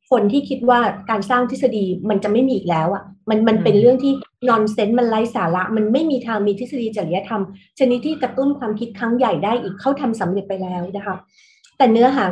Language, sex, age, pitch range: Thai, female, 30-49, 195-255 Hz